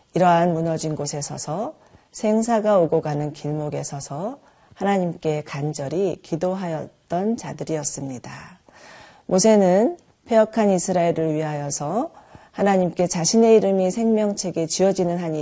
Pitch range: 150-195 Hz